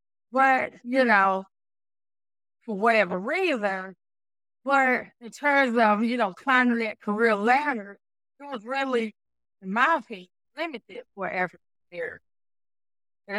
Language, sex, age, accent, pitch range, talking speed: English, female, 30-49, American, 180-230 Hz, 115 wpm